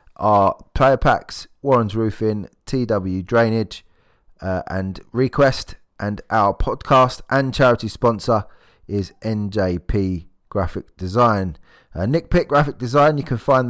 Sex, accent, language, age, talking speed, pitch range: male, British, English, 30-49, 125 wpm, 90-115 Hz